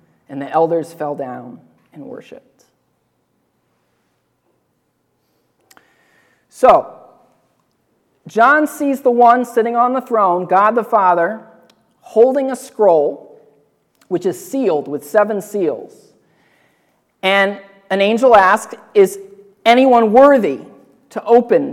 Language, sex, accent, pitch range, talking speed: English, male, American, 200-260 Hz, 100 wpm